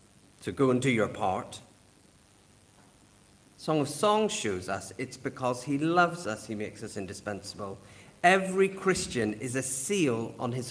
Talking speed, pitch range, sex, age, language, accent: 150 wpm, 100-145 Hz, male, 40-59, English, British